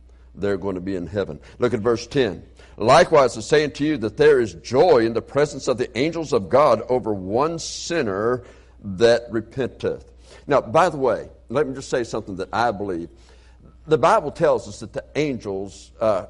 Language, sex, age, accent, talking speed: English, male, 60-79, American, 190 wpm